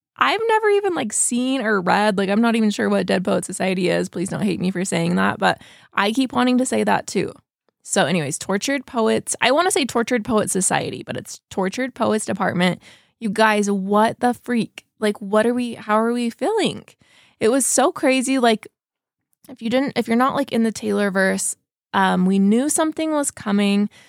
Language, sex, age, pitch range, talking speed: English, female, 20-39, 185-230 Hz, 205 wpm